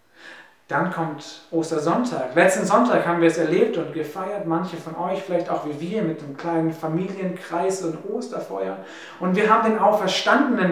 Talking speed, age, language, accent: 160 wpm, 40-59, German, German